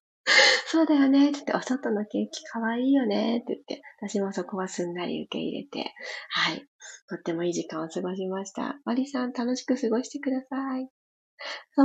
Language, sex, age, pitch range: Japanese, female, 30-49, 180-275 Hz